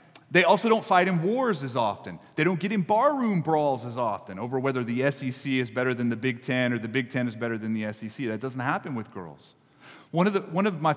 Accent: American